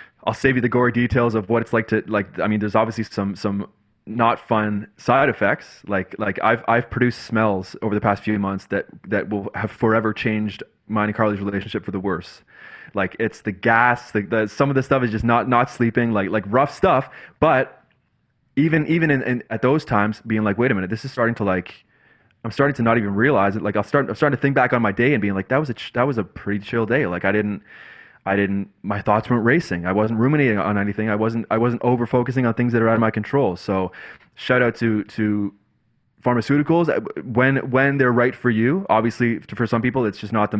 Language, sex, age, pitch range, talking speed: English, male, 20-39, 105-120 Hz, 240 wpm